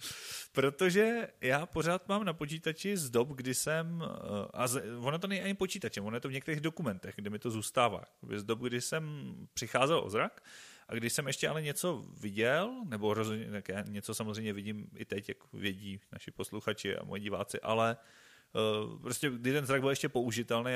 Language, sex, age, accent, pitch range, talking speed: Czech, male, 30-49, native, 105-140 Hz, 185 wpm